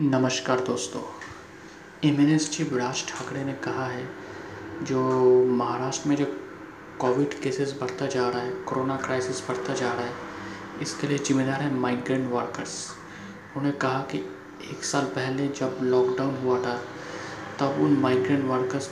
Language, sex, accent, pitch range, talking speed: Hindi, male, native, 130-145 Hz, 145 wpm